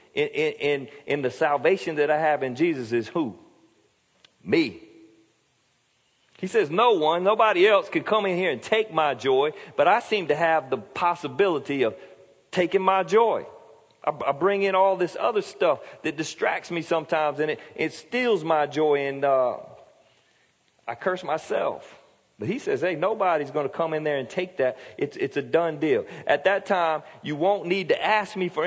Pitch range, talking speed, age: 125-180 Hz, 185 wpm, 40-59